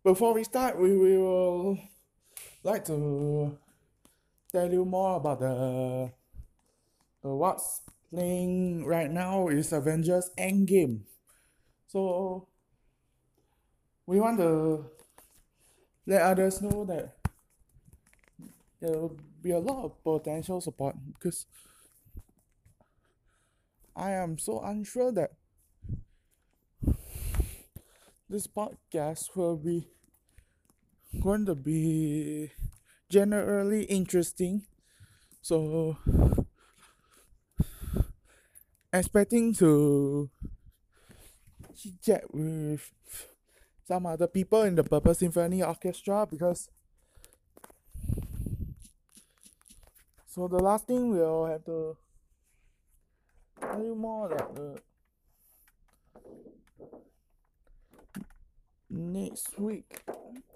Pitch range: 150-195 Hz